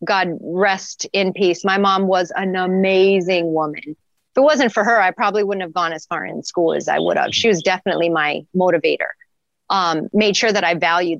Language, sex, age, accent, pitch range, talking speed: English, female, 30-49, American, 175-230 Hz, 210 wpm